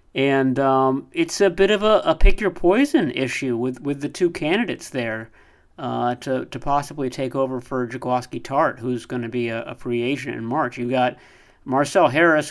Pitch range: 125-150 Hz